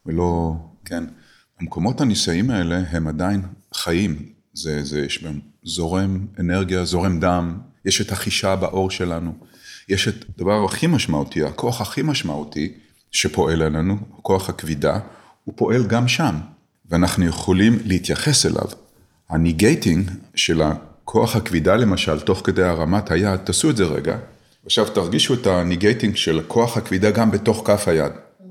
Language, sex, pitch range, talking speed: Hebrew, male, 80-105 Hz, 135 wpm